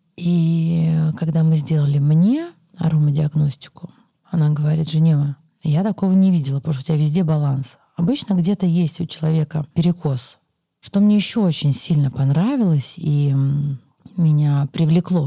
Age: 30-49